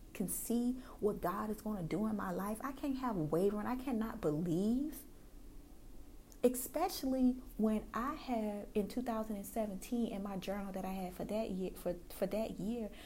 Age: 30-49